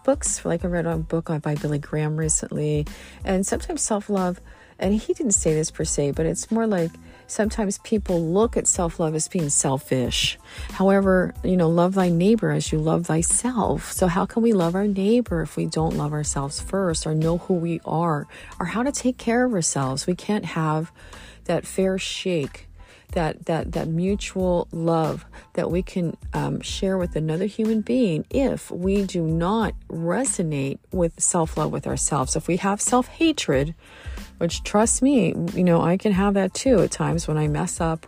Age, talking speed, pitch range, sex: 40-59, 185 wpm, 160-210 Hz, female